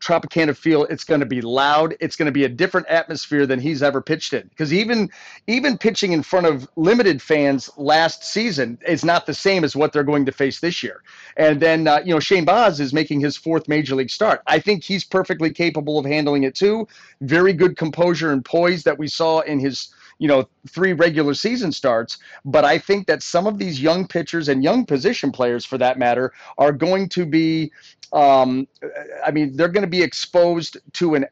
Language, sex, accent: English, male, American